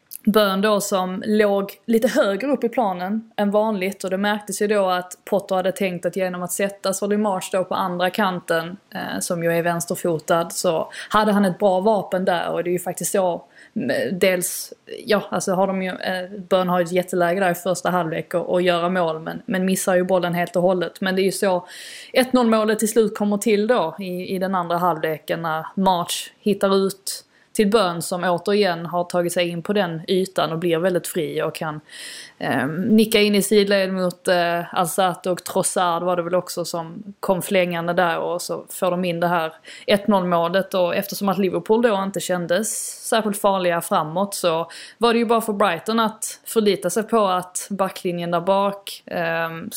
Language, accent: Swedish, native